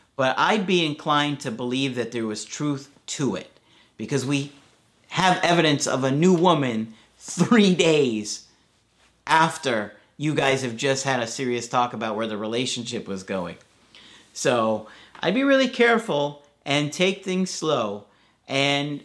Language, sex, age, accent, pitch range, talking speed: English, male, 50-69, American, 125-160 Hz, 150 wpm